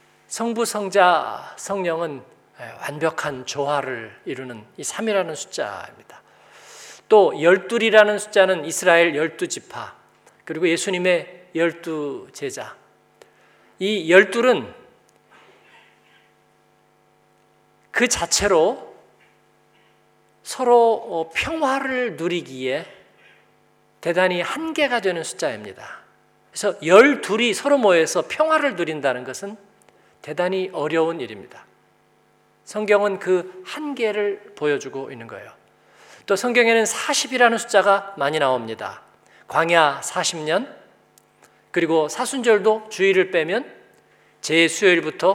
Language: Korean